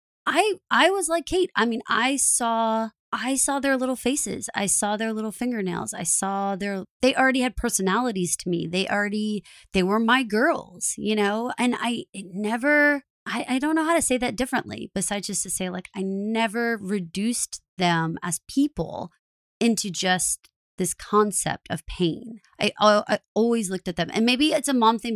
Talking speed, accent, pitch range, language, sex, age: 190 wpm, American, 175-230 Hz, English, female, 20-39